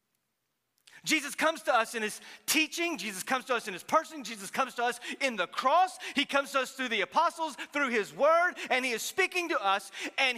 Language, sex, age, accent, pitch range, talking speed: English, male, 40-59, American, 225-340 Hz, 220 wpm